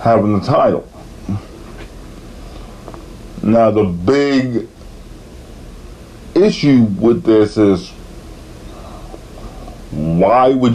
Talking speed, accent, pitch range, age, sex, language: 65 wpm, American, 110-150 Hz, 50-69, male, English